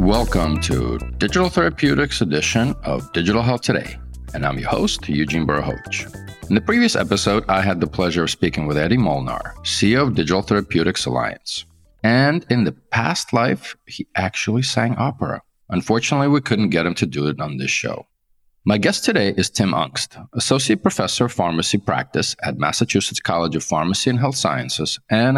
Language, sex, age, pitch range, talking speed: English, male, 40-59, 80-120 Hz, 175 wpm